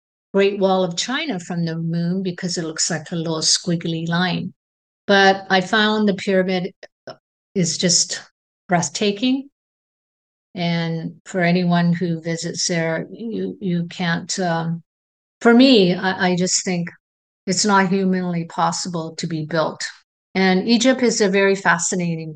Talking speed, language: 140 wpm, English